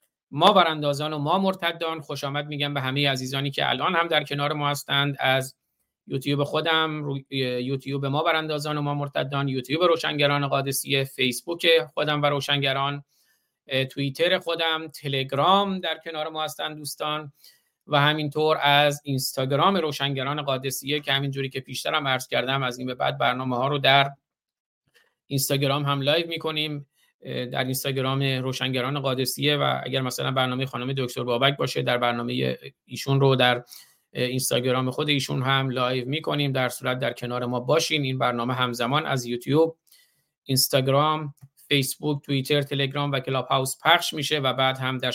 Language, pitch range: Persian, 130-150 Hz